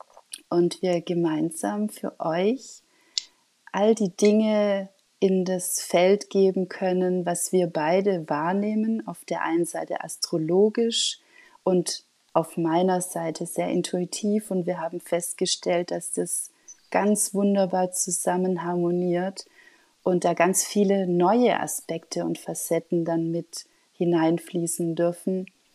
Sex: female